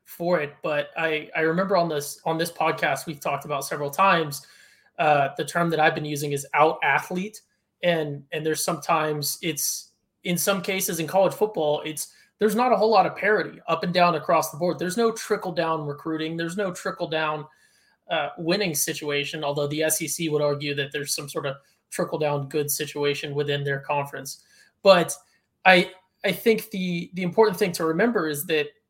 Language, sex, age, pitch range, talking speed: English, male, 20-39, 155-185 Hz, 190 wpm